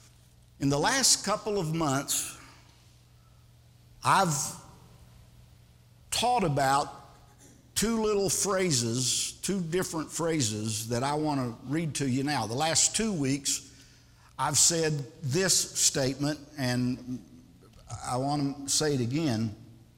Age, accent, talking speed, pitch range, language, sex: 50-69, American, 115 wpm, 125-170 Hz, English, male